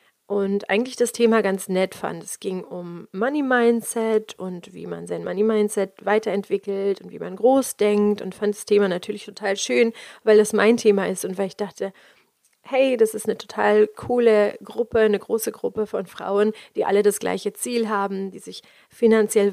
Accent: German